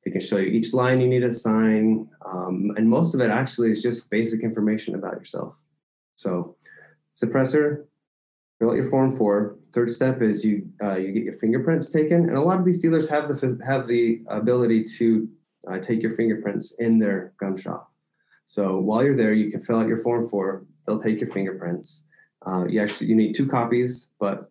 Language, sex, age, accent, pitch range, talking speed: English, male, 20-39, American, 100-120 Hz, 200 wpm